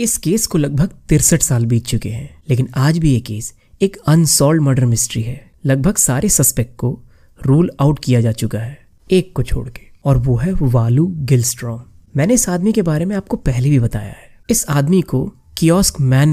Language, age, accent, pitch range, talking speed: Hindi, 30-49, native, 120-180 Hz, 50 wpm